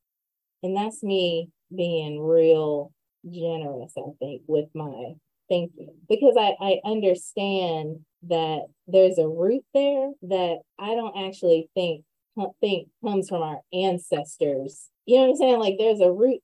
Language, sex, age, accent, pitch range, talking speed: English, female, 30-49, American, 160-190 Hz, 140 wpm